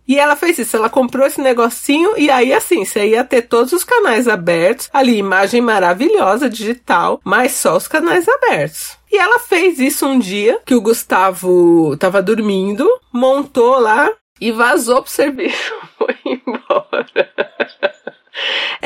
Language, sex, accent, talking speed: Portuguese, female, Brazilian, 145 wpm